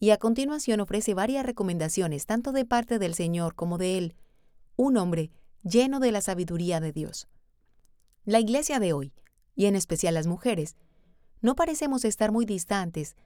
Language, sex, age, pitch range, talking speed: Spanish, female, 30-49, 180-235 Hz, 165 wpm